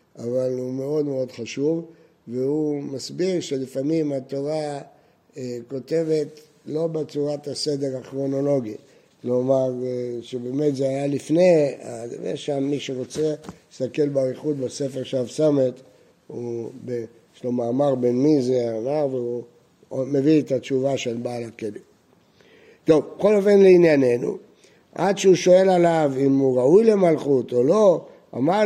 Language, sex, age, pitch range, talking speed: Hebrew, male, 60-79, 135-185 Hz, 115 wpm